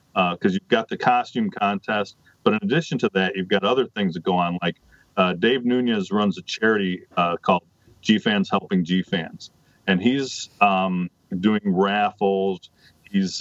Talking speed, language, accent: 165 wpm, English, American